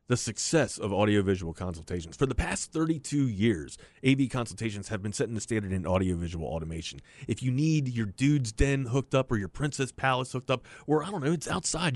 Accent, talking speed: American, 200 wpm